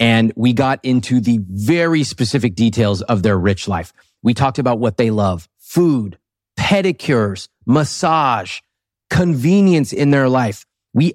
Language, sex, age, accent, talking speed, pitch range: English, male, 30-49, American, 140 wpm, 100-130 Hz